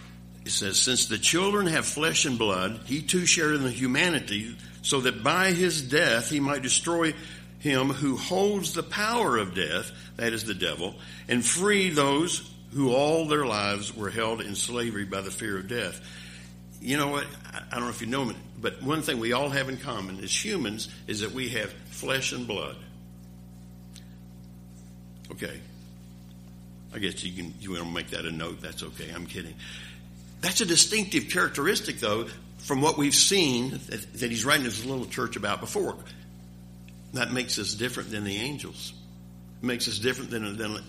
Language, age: English, 60-79